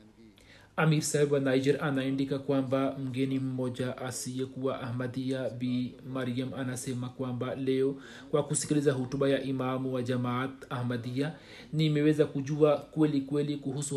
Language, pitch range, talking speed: Swahili, 135-165 Hz, 120 wpm